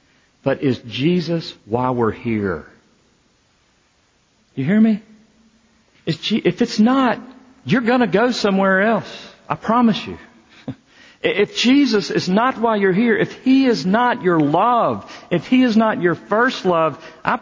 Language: English